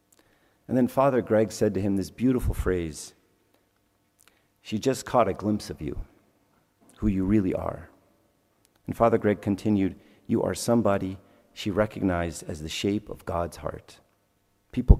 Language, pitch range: English, 90-110 Hz